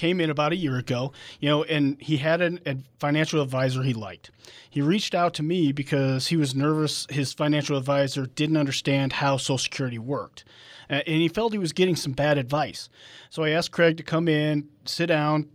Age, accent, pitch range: 40-59, American, 140-165 Hz